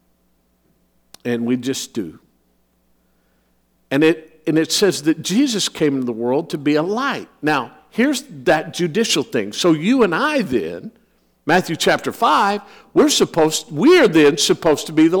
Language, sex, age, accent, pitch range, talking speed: English, male, 50-69, American, 155-245 Hz, 160 wpm